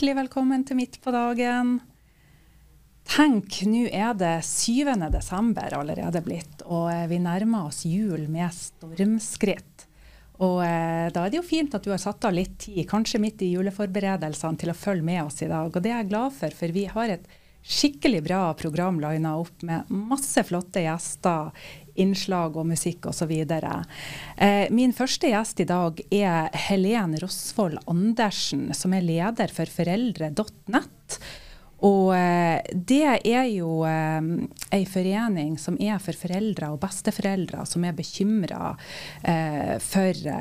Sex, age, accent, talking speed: female, 30-49, Swedish, 160 wpm